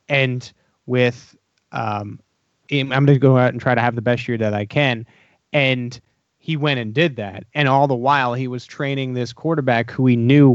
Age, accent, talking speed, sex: 30-49, American, 205 wpm, male